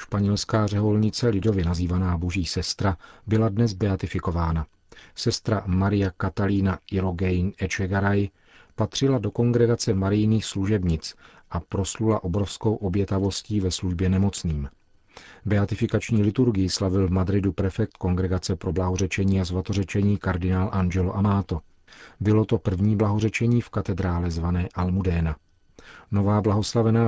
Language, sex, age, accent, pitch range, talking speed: Czech, male, 40-59, native, 90-105 Hz, 110 wpm